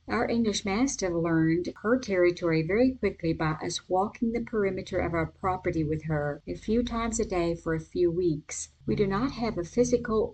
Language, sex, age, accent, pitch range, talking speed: English, female, 50-69, American, 170-215 Hz, 190 wpm